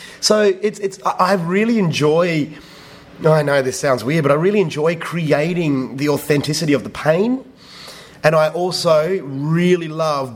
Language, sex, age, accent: English, male, 30-49, Australian